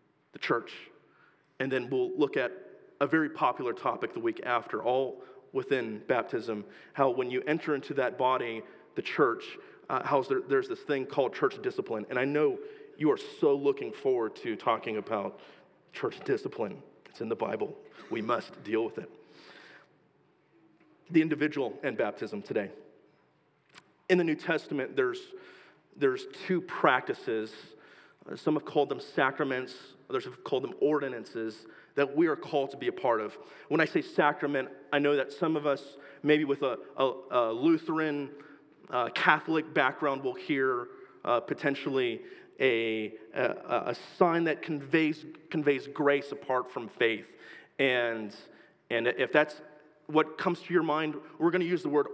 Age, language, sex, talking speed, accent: 40-59, English, male, 160 wpm, American